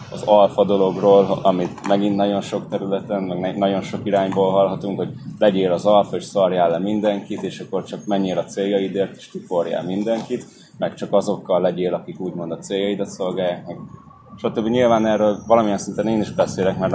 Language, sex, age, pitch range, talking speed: Hungarian, male, 20-39, 90-105 Hz, 175 wpm